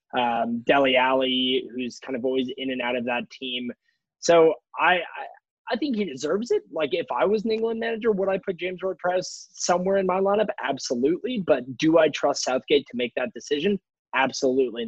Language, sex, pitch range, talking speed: English, male, 130-180 Hz, 200 wpm